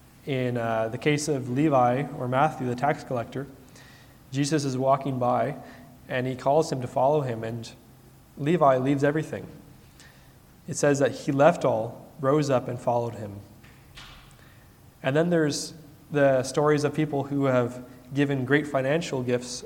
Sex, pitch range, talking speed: male, 120-145 Hz, 155 wpm